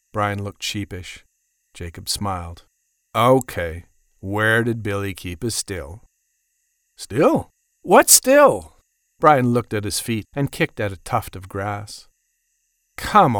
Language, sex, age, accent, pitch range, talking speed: English, male, 50-69, American, 110-170 Hz, 125 wpm